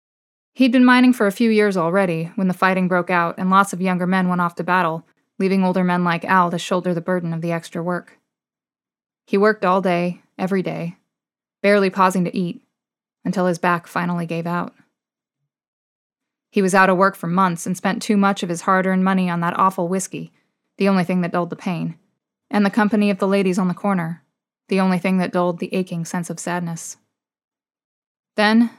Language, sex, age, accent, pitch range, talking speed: English, female, 20-39, American, 175-205 Hz, 200 wpm